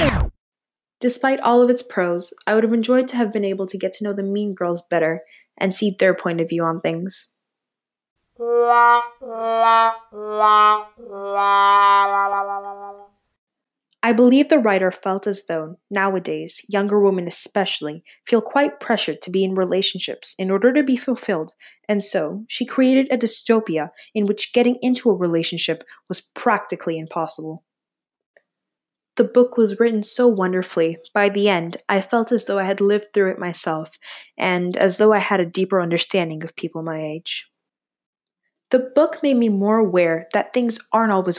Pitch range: 170-225 Hz